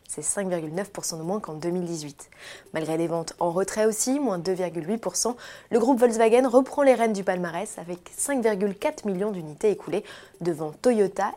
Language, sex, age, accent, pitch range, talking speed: French, female, 20-39, French, 175-230 Hz, 155 wpm